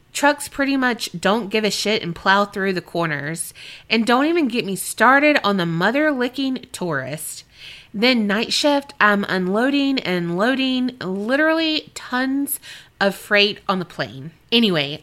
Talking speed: 155 wpm